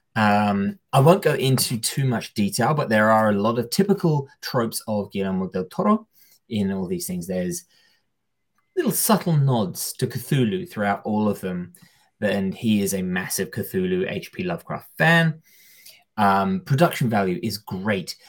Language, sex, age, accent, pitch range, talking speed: English, male, 20-39, British, 100-150 Hz, 160 wpm